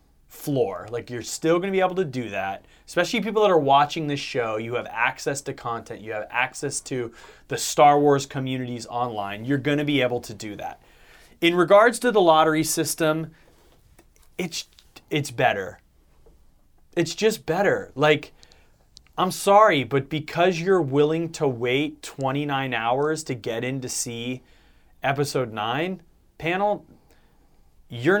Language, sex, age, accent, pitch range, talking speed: English, male, 30-49, American, 130-200 Hz, 155 wpm